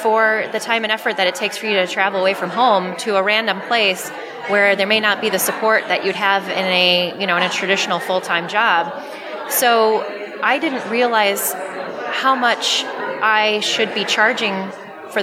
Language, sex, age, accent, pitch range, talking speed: English, female, 20-39, American, 185-220 Hz, 195 wpm